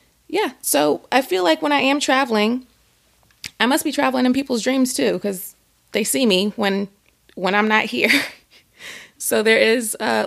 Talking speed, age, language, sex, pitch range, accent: 175 wpm, 30-49, English, female, 180-255 Hz, American